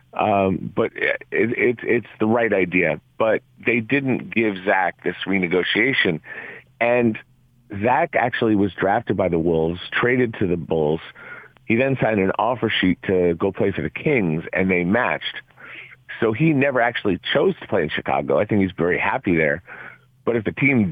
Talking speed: 175 wpm